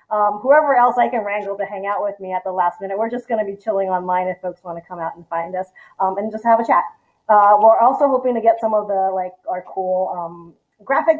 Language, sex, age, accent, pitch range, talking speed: English, female, 30-49, American, 190-255 Hz, 275 wpm